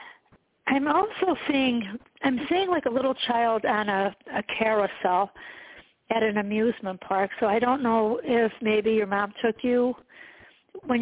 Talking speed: 150 wpm